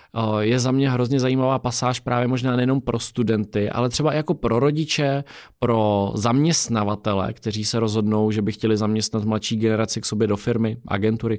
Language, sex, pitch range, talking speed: Czech, male, 105-125 Hz, 170 wpm